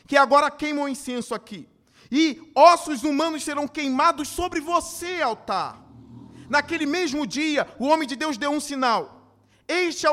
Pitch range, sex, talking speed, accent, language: 255-320 Hz, male, 155 wpm, Brazilian, Portuguese